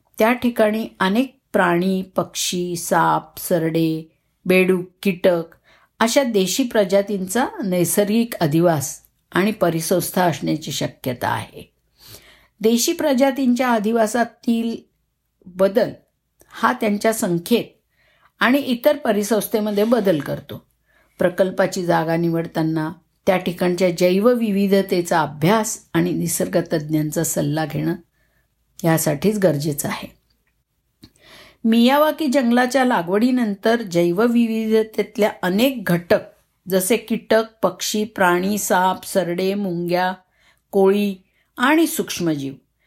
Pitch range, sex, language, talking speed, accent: 170-220 Hz, female, Marathi, 85 wpm, native